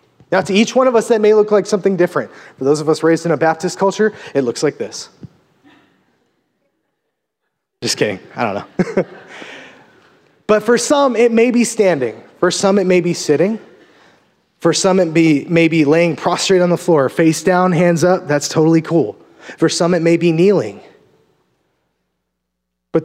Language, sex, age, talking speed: English, male, 30-49, 175 wpm